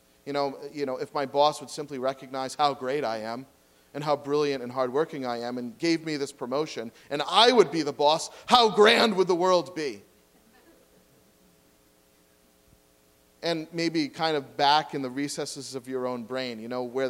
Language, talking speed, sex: English, 185 wpm, male